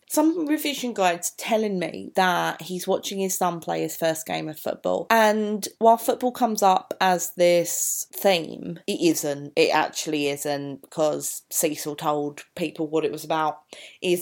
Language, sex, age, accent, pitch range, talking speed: English, female, 30-49, British, 170-225 Hz, 160 wpm